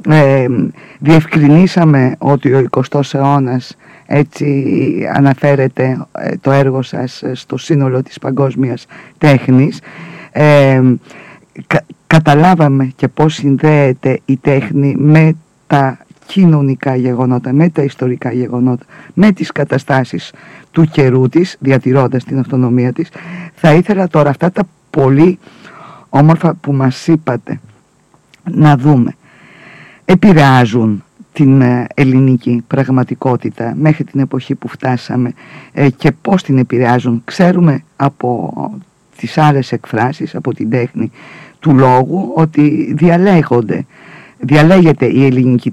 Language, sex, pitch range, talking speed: Greek, female, 130-160 Hz, 105 wpm